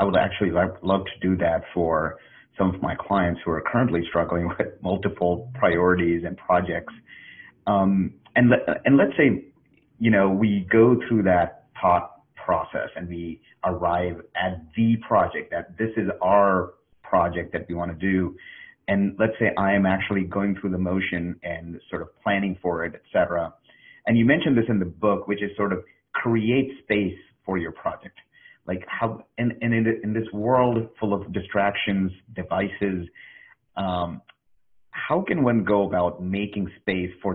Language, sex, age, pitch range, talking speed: English, male, 40-59, 90-110 Hz, 165 wpm